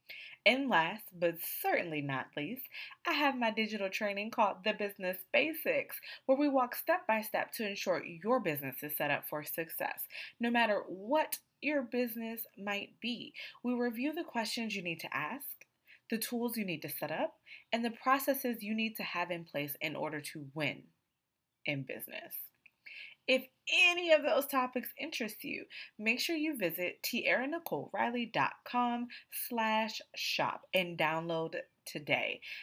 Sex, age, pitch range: female, 20-39, 175-270 Hz